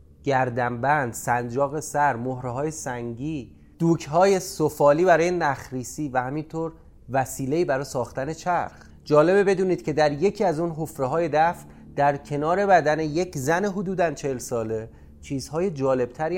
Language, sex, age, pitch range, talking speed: Persian, male, 30-49, 115-160 Hz, 125 wpm